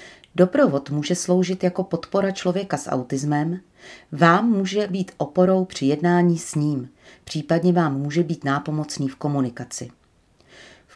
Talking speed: 130 wpm